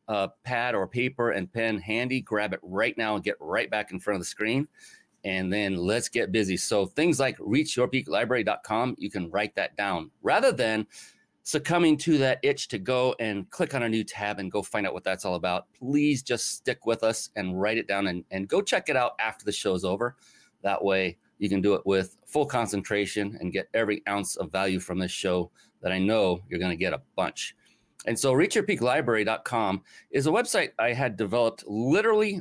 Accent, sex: American, male